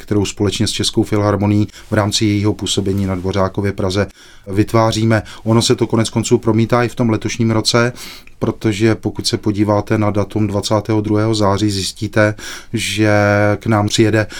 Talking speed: 155 wpm